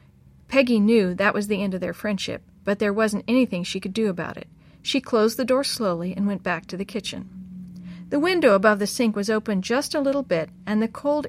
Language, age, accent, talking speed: English, 50-69, American, 230 wpm